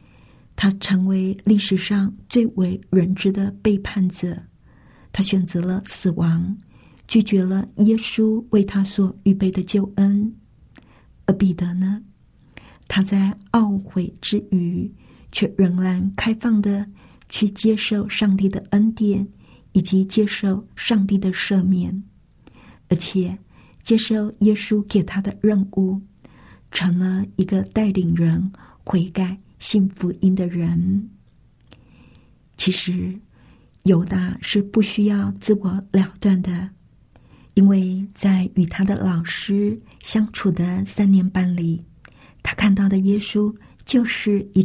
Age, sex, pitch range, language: 50-69, female, 190-205 Hz, Chinese